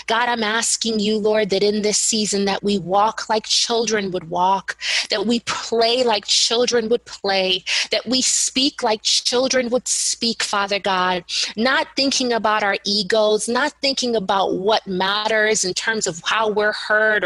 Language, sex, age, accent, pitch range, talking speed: English, female, 20-39, American, 200-245 Hz, 165 wpm